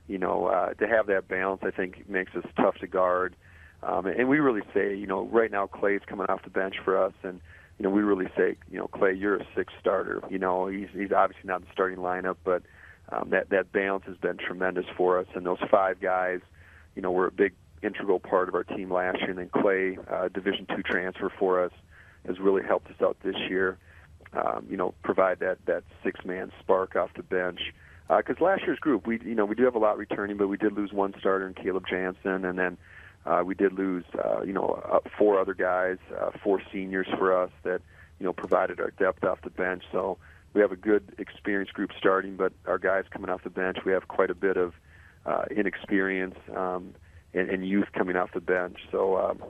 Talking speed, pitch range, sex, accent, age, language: 230 wpm, 90-95 Hz, male, American, 40-59, English